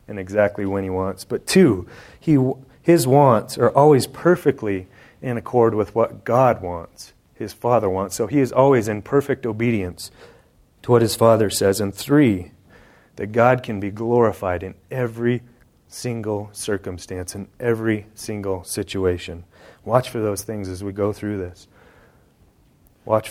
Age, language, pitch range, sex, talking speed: 30-49, English, 100-125 Hz, male, 150 wpm